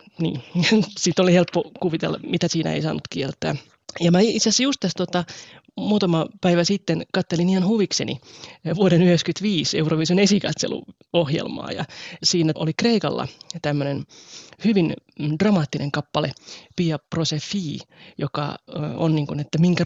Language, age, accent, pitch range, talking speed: Finnish, 20-39, native, 155-190 Hz, 130 wpm